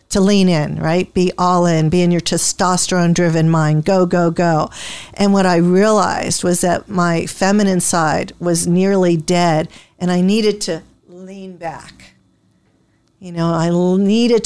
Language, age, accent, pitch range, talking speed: English, 50-69, American, 175-210 Hz, 155 wpm